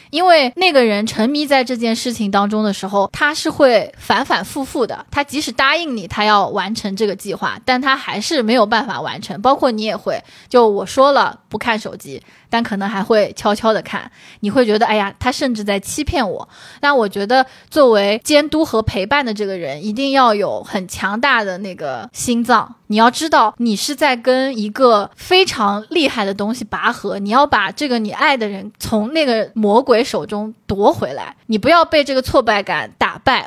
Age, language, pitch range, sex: 20-39, Chinese, 210-275 Hz, female